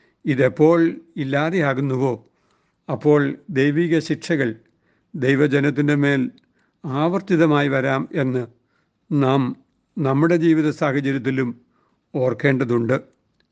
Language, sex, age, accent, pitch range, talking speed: Malayalam, male, 60-79, native, 130-180 Hz, 65 wpm